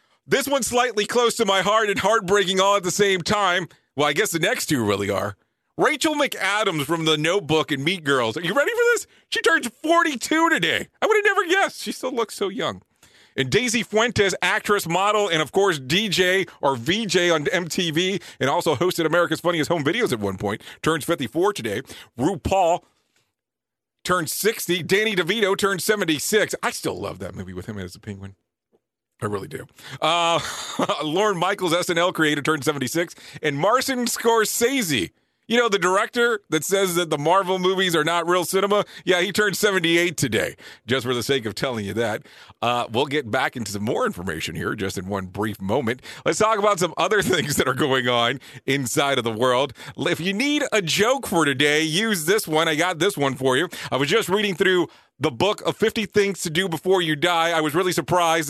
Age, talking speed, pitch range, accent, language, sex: 40-59, 200 wpm, 150-205 Hz, American, English, male